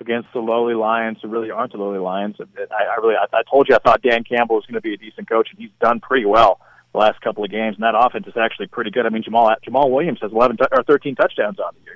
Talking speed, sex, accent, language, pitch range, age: 270 wpm, male, American, English, 115-150 Hz, 40-59